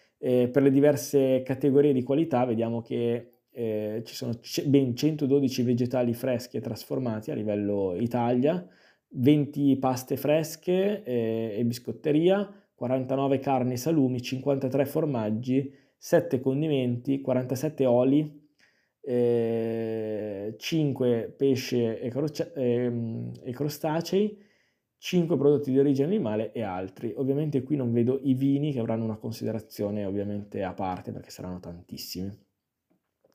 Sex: male